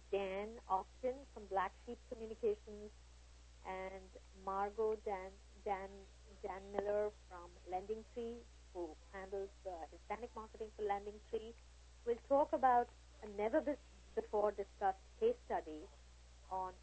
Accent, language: Indian, English